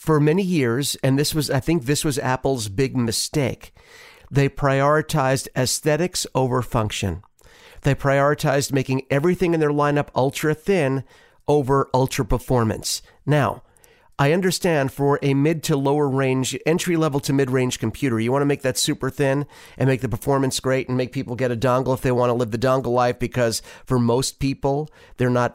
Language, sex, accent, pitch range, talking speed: English, male, American, 130-170 Hz, 180 wpm